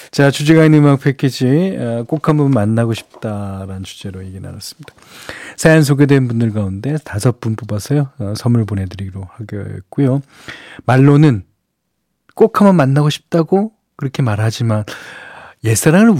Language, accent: Korean, native